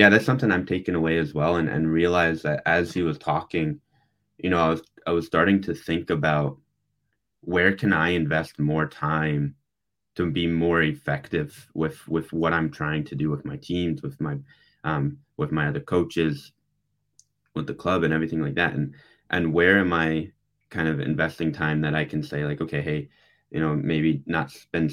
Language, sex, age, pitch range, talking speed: English, male, 20-39, 75-90 Hz, 195 wpm